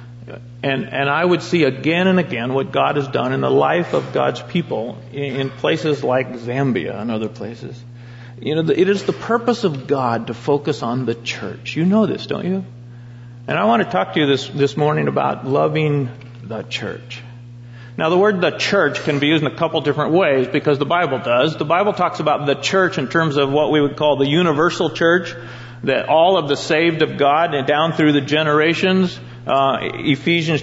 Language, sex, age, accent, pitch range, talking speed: English, male, 40-59, American, 125-160 Hz, 210 wpm